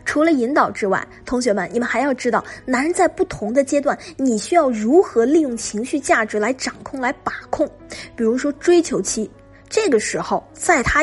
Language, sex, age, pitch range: Chinese, female, 20-39, 220-315 Hz